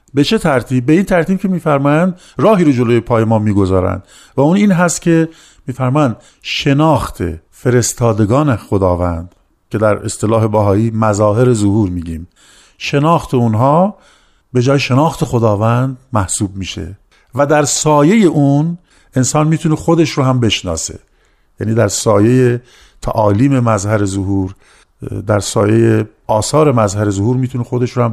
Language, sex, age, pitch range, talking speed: Persian, male, 50-69, 105-140 Hz, 135 wpm